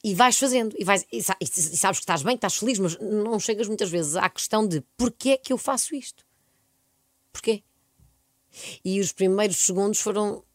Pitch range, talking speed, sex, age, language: 150-205 Hz, 190 wpm, female, 20-39, Portuguese